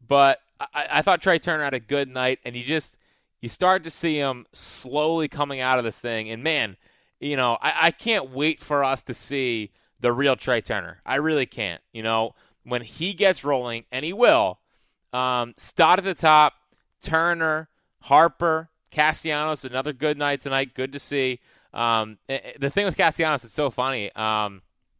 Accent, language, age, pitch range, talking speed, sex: American, English, 20-39, 130-155 Hz, 180 wpm, male